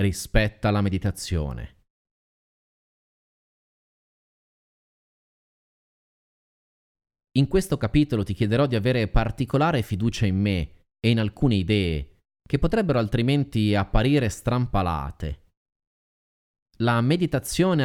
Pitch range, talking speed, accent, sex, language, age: 95-125 Hz, 85 wpm, native, male, Italian, 30-49